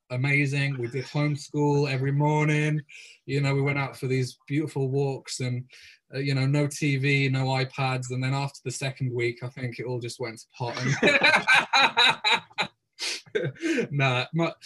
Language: English